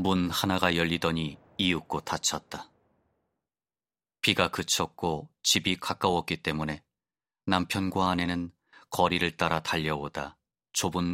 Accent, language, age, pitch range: native, Korean, 30-49, 80-90 Hz